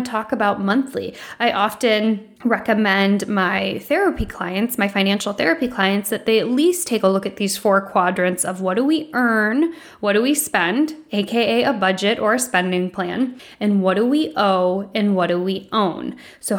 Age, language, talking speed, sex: 10-29, English, 185 wpm, female